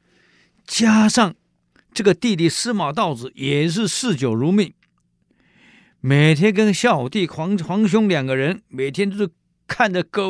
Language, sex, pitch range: Chinese, male, 145-200 Hz